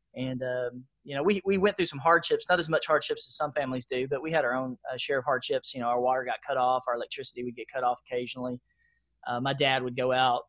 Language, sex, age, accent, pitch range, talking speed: English, male, 20-39, American, 125-150 Hz, 270 wpm